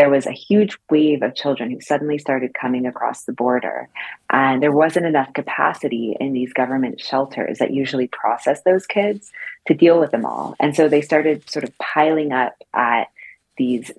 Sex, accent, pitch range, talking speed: female, American, 130-155 Hz, 185 wpm